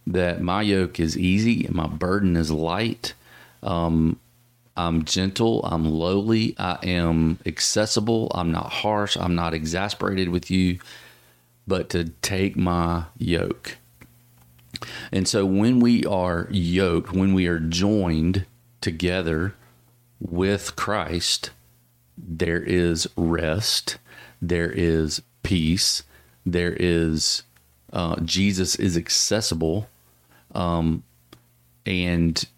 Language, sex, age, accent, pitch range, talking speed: English, male, 40-59, American, 80-100 Hz, 105 wpm